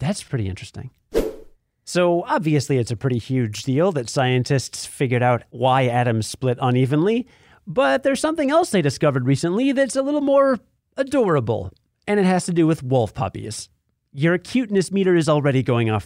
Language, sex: English, male